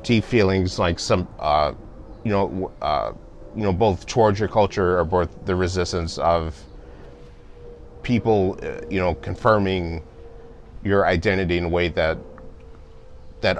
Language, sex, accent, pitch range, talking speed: English, male, American, 80-100 Hz, 130 wpm